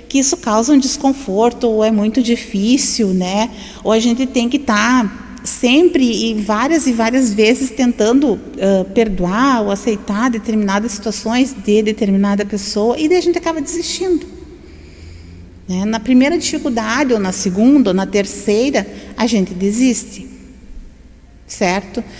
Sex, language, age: female, Portuguese, 40-59